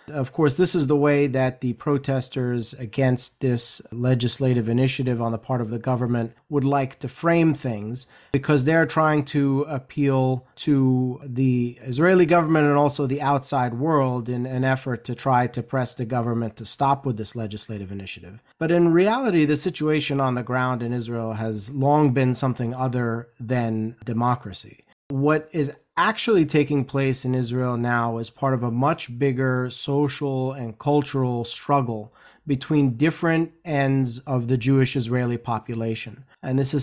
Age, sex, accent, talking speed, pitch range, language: 30-49, male, American, 160 wpm, 125-145 Hz, English